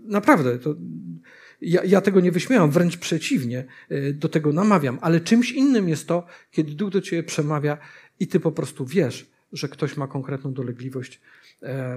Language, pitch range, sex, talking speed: Polish, 135-185 Hz, male, 165 wpm